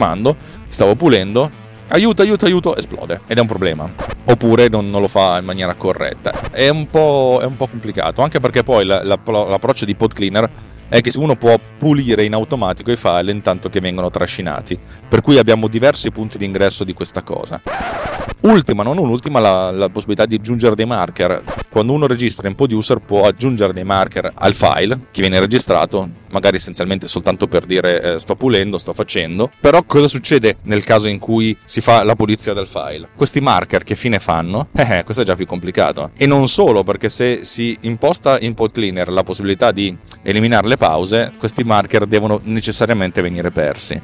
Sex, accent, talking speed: male, native, 190 wpm